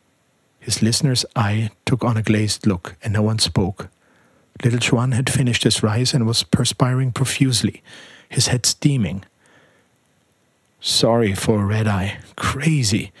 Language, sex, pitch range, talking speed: German, male, 110-135 Hz, 140 wpm